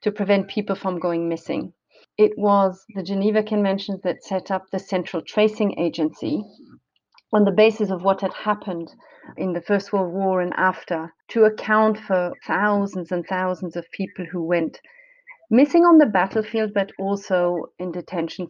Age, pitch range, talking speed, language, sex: 40-59, 185-220 Hz, 160 wpm, English, female